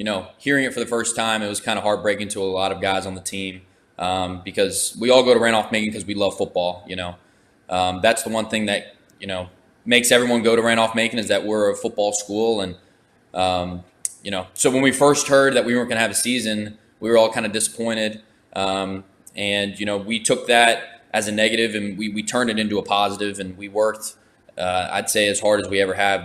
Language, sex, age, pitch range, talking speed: English, male, 20-39, 95-115 Hz, 240 wpm